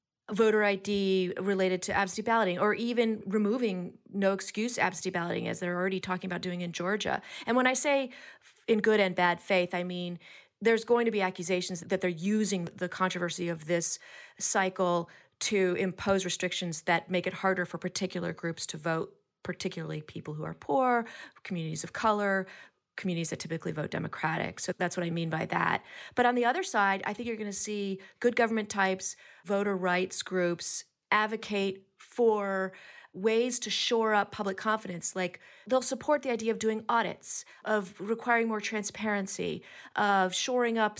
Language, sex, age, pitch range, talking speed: English, female, 40-59, 180-220 Hz, 170 wpm